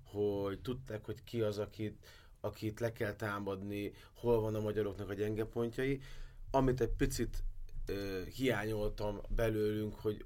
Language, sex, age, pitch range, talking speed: Hungarian, male, 20-39, 105-125 Hz, 135 wpm